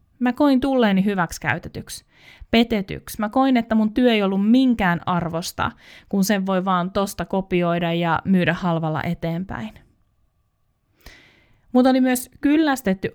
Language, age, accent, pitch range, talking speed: Finnish, 20-39, native, 175-225 Hz, 130 wpm